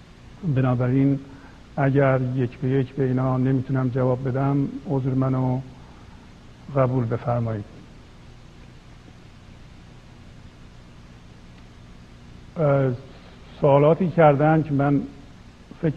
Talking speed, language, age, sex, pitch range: 70 wpm, Persian, 50-69, male, 120-140 Hz